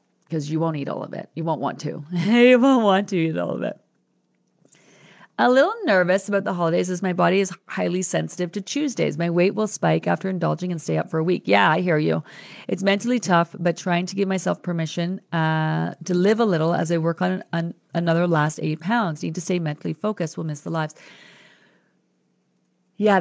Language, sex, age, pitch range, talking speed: English, female, 40-59, 160-200 Hz, 215 wpm